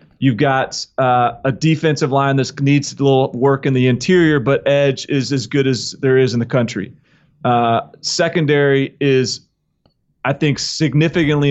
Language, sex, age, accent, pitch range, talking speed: English, male, 30-49, American, 130-155 Hz, 160 wpm